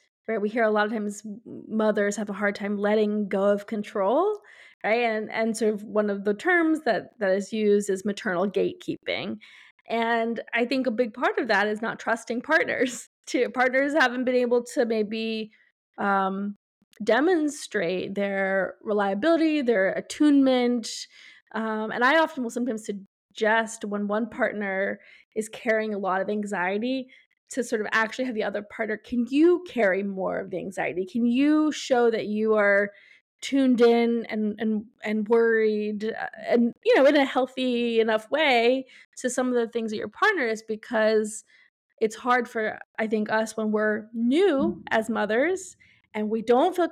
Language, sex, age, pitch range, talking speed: English, female, 20-39, 215-260 Hz, 170 wpm